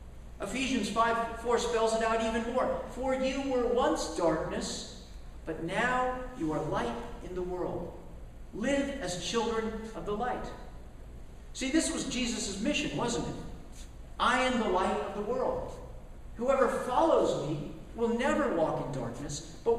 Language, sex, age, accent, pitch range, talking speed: English, male, 50-69, American, 185-255 Hz, 150 wpm